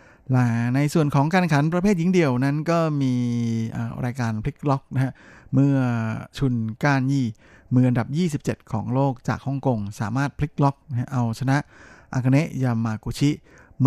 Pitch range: 115-140 Hz